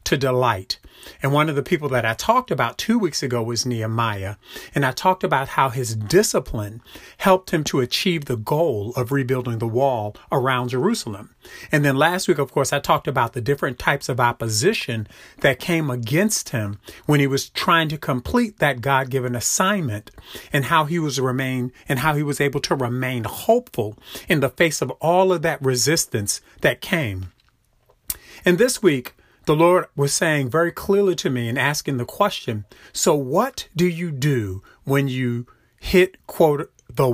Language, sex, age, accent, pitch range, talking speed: English, male, 40-59, American, 125-160 Hz, 175 wpm